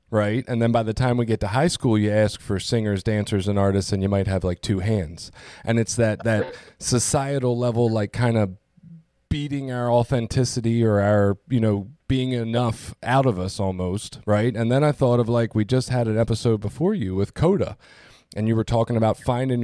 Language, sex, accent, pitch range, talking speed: English, male, American, 100-130 Hz, 210 wpm